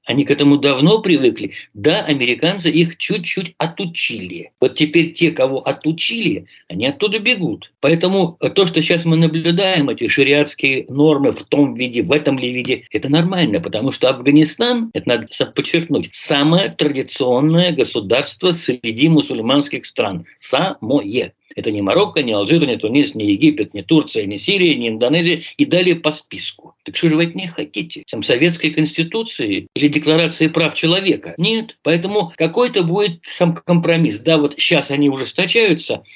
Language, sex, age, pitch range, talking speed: Russian, male, 60-79, 145-175 Hz, 155 wpm